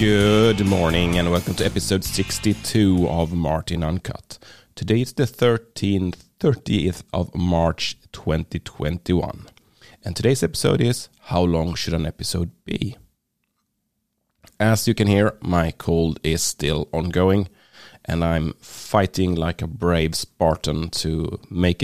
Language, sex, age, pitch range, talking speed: English, male, 30-49, 85-100 Hz, 125 wpm